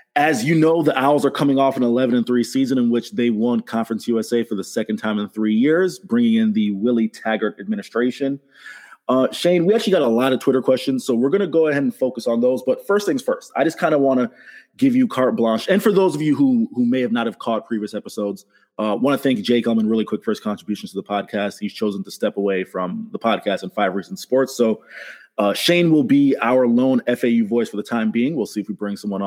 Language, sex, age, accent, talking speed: English, male, 20-39, American, 255 wpm